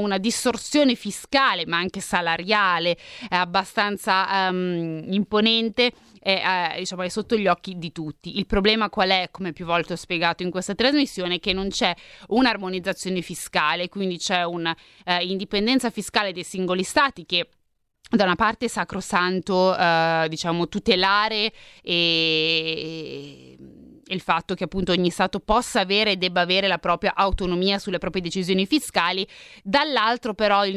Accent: native